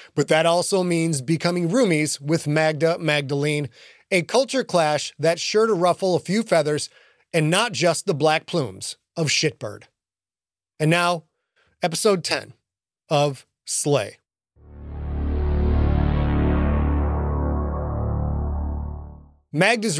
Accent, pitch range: American, 135-210 Hz